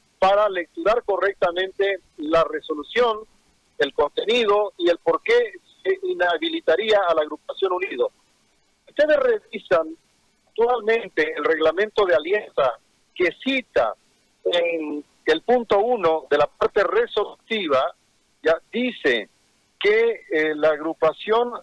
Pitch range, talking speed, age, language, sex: 170-250 Hz, 110 wpm, 50-69, Spanish, male